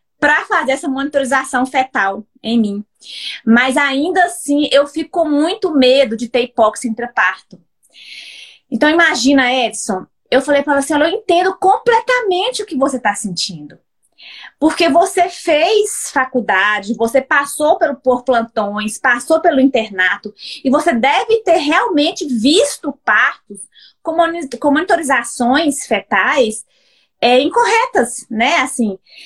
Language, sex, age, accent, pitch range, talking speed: Portuguese, female, 20-39, Brazilian, 235-315 Hz, 125 wpm